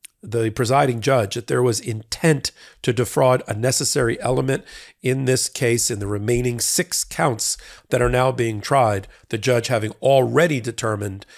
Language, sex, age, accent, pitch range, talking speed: English, male, 40-59, American, 105-135 Hz, 160 wpm